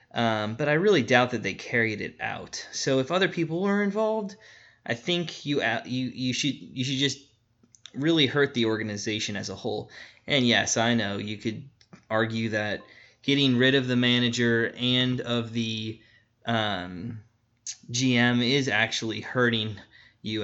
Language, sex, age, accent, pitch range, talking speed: English, male, 20-39, American, 115-175 Hz, 160 wpm